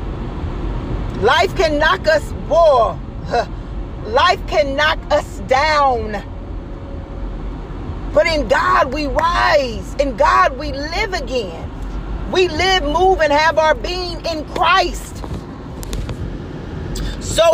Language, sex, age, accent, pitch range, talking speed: English, female, 40-59, American, 285-330 Hz, 105 wpm